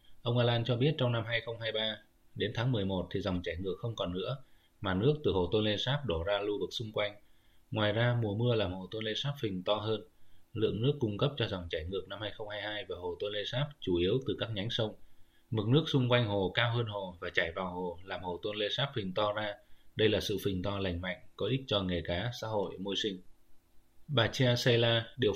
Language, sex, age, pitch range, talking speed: Vietnamese, male, 20-39, 95-120 Hz, 245 wpm